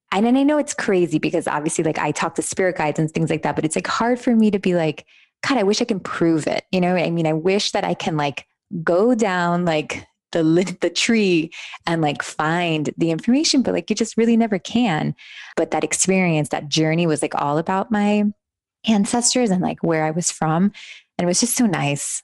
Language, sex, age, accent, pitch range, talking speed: English, female, 20-39, American, 150-195 Hz, 230 wpm